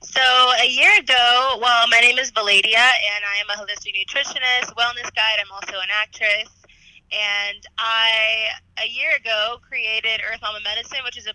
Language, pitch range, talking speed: English, 200-250 Hz, 175 wpm